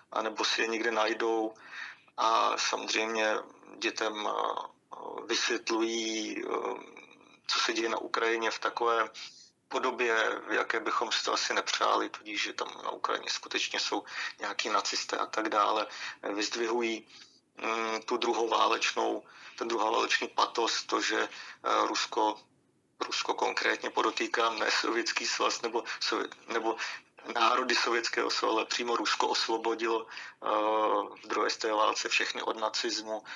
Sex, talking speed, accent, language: male, 125 wpm, native, Czech